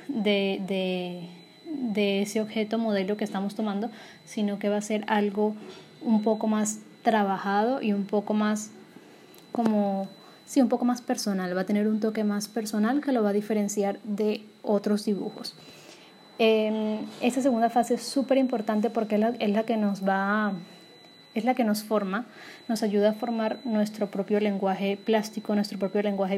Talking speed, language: 175 wpm, Spanish